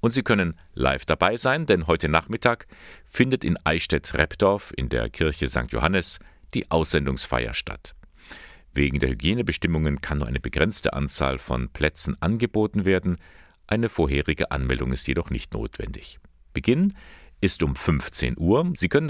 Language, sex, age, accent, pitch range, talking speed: German, male, 50-69, German, 70-95 Hz, 145 wpm